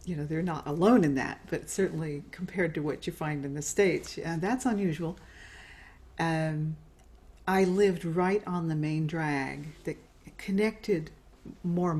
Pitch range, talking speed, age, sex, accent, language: 150-190 Hz, 165 wpm, 40-59, female, American, English